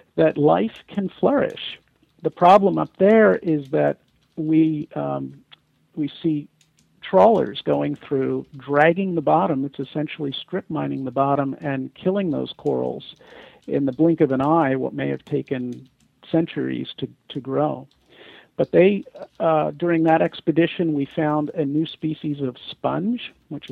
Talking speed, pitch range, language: 145 wpm, 135-165 Hz, English